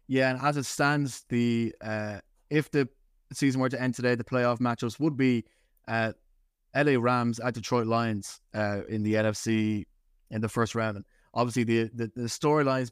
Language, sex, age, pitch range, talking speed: English, male, 20-39, 110-125 Hz, 180 wpm